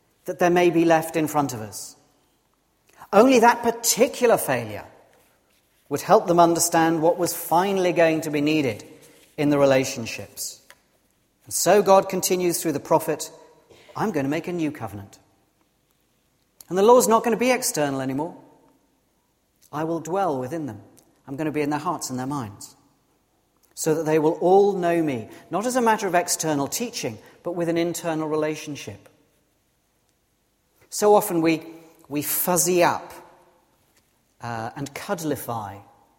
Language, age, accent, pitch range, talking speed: English, 40-59, British, 145-185 Hz, 155 wpm